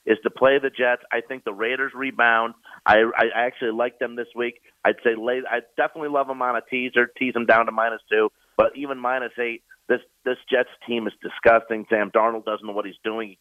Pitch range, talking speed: 115-150 Hz, 225 wpm